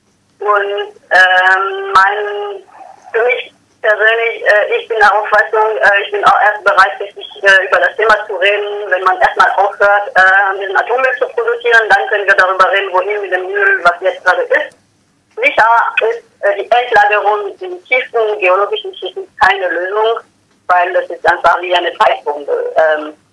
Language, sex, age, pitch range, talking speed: German, female, 30-49, 195-245 Hz, 170 wpm